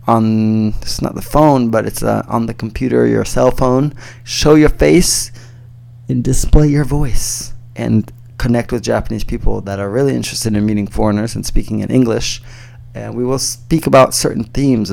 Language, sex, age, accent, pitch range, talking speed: English, male, 20-39, American, 110-125 Hz, 175 wpm